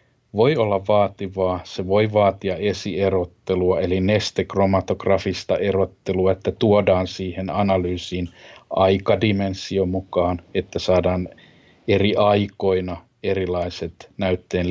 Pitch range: 90-110 Hz